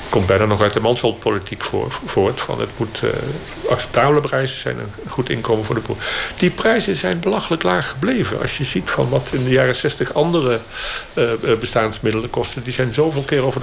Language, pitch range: Dutch, 110-145 Hz